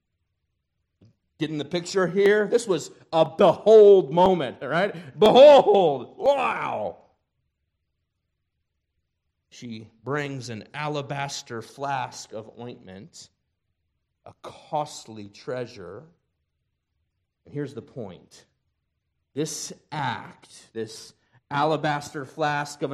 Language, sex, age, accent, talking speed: English, male, 40-59, American, 85 wpm